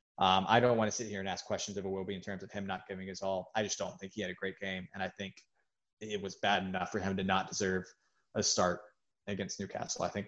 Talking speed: 280 wpm